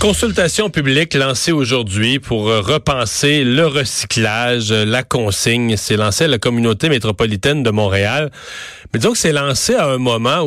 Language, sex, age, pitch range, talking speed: French, male, 40-59, 105-135 Hz, 150 wpm